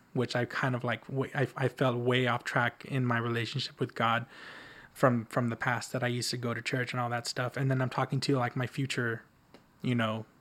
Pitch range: 120-130 Hz